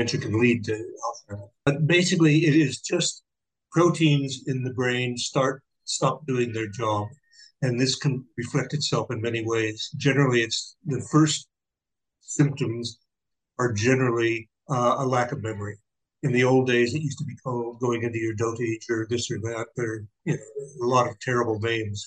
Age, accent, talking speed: 60-79, American, 175 wpm